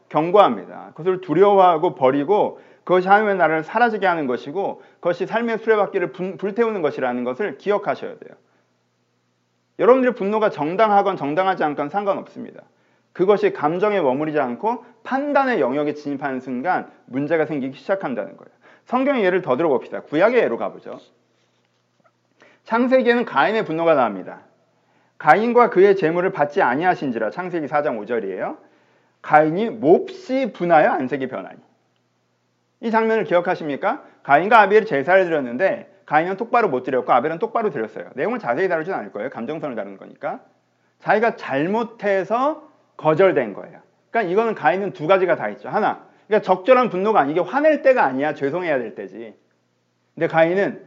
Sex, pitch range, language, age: male, 140-220 Hz, Korean, 40-59